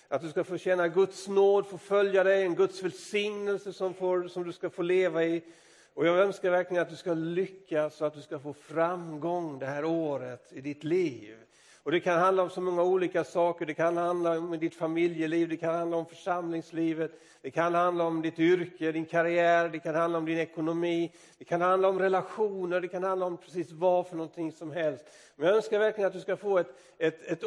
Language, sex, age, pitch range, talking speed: Swedish, male, 50-69, 155-180 Hz, 215 wpm